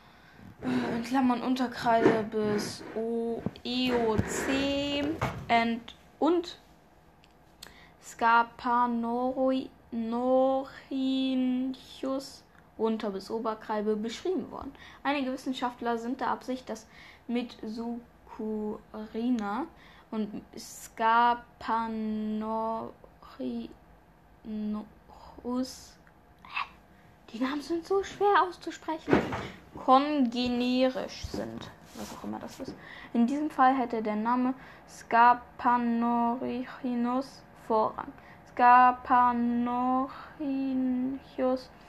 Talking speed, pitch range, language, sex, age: 70 wpm, 225-260 Hz, German, female, 10-29